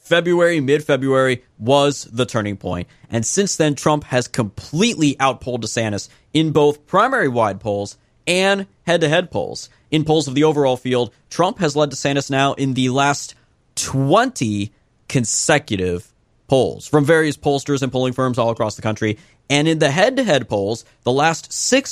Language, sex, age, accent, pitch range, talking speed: English, male, 20-39, American, 120-160 Hz, 155 wpm